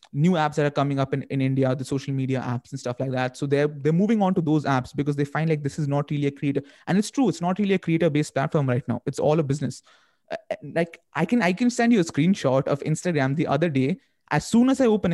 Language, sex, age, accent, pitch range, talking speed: Hindi, male, 20-39, native, 135-170 Hz, 280 wpm